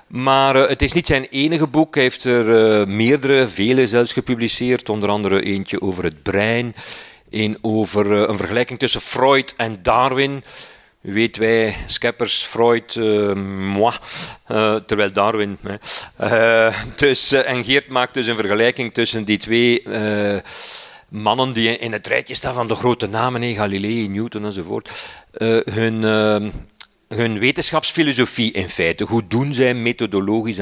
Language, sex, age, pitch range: Dutch, male, 50-69, 105-130 Hz